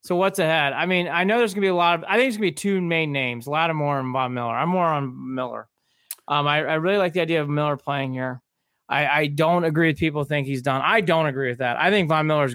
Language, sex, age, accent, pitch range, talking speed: English, male, 30-49, American, 140-170 Hz, 300 wpm